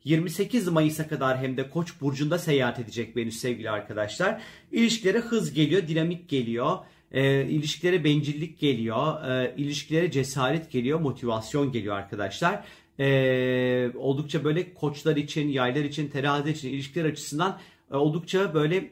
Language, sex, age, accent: Turkish, male, 40-59, native